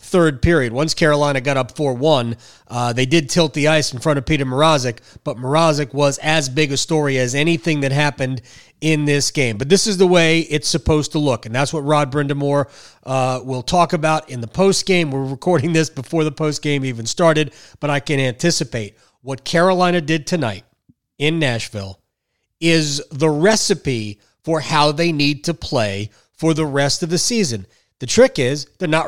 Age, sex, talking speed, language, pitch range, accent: 30-49, male, 190 wpm, English, 130-165 Hz, American